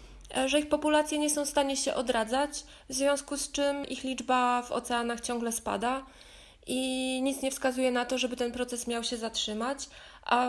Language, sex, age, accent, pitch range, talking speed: Polish, female, 20-39, native, 220-260 Hz, 185 wpm